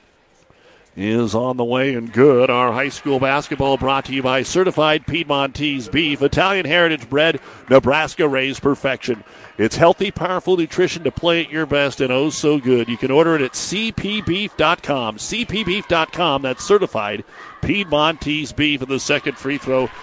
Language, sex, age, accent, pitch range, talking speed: English, male, 50-69, American, 125-150 Hz, 155 wpm